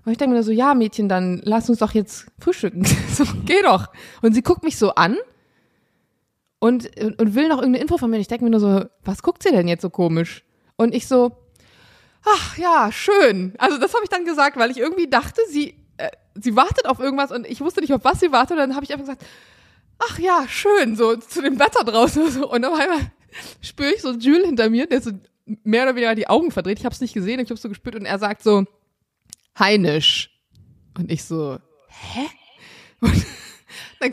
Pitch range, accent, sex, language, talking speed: 200-270 Hz, German, female, German, 215 wpm